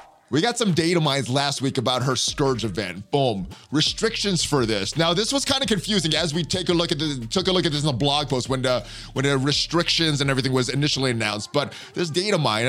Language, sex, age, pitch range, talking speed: English, male, 20-39, 130-170 Hz, 240 wpm